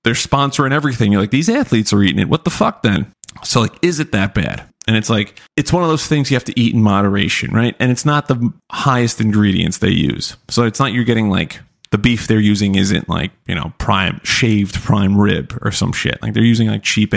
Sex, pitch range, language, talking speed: male, 105-125 Hz, English, 245 wpm